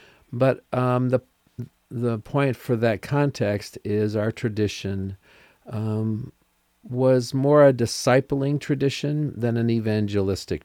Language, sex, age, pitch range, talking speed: English, male, 50-69, 95-125 Hz, 115 wpm